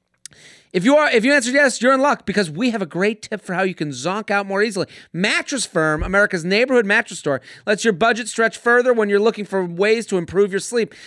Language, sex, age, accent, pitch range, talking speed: English, male, 30-49, American, 165-225 Hz, 240 wpm